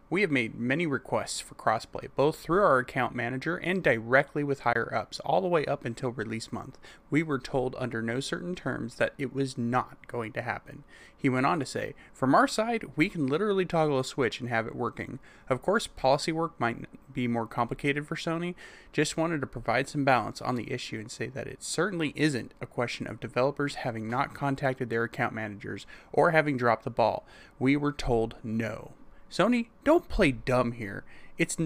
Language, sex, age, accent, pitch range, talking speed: English, male, 30-49, American, 120-150 Hz, 200 wpm